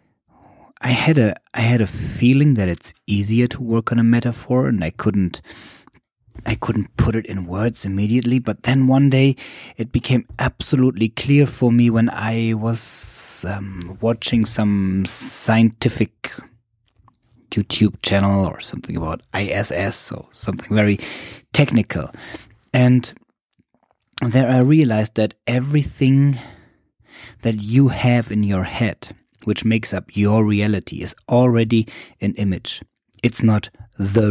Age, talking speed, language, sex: 30-49, 135 wpm, English, male